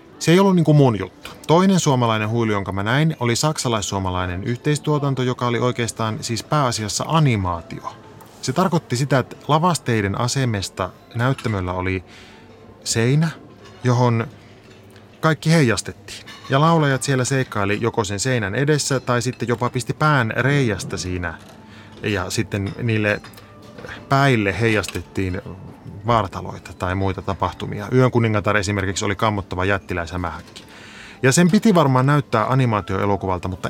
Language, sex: Finnish, male